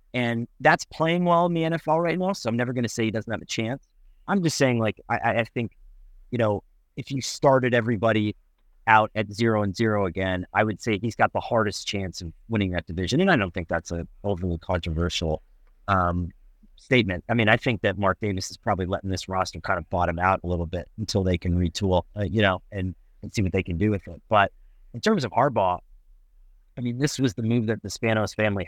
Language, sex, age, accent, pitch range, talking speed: English, male, 30-49, American, 95-115 Hz, 230 wpm